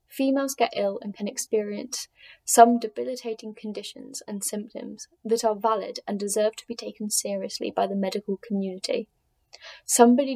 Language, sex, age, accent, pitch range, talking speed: English, female, 10-29, British, 200-240 Hz, 145 wpm